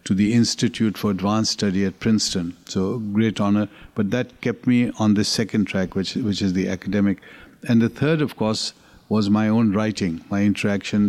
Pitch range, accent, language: 100-115 Hz, Indian, English